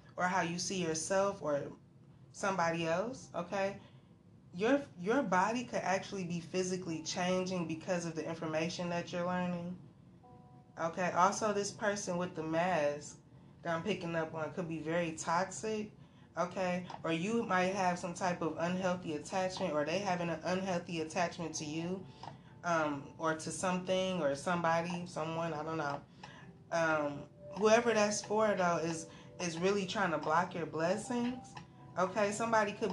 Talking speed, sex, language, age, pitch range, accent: 155 wpm, female, English, 20-39, 160-185 Hz, American